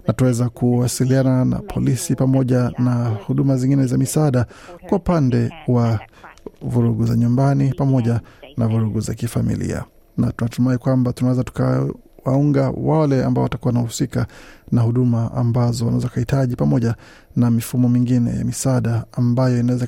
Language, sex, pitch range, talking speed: Swahili, male, 120-140 Hz, 130 wpm